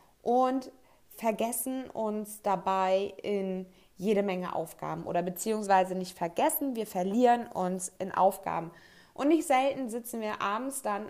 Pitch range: 190-230 Hz